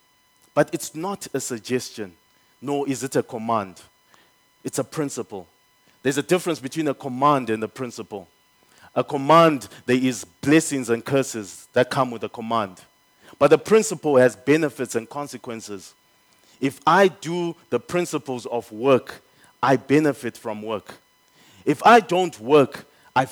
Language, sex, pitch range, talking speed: English, male, 130-170 Hz, 145 wpm